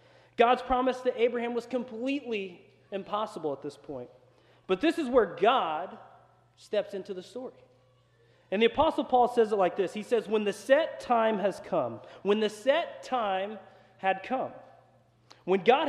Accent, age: American, 30-49